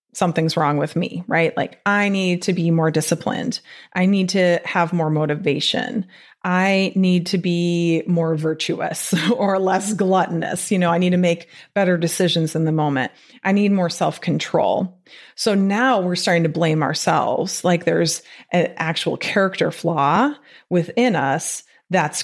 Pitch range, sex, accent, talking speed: 170-245 Hz, female, American, 155 wpm